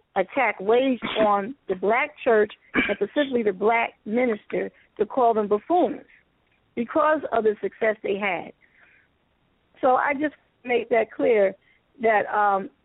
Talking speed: 130 wpm